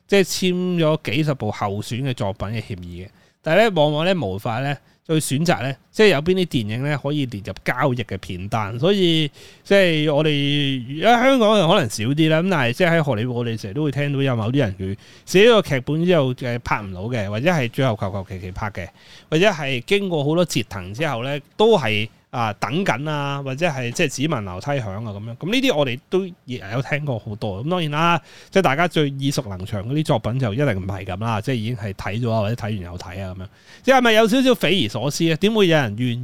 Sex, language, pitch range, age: male, Chinese, 110-160 Hz, 30-49